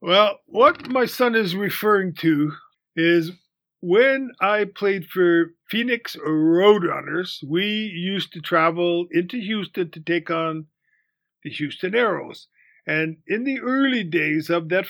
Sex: male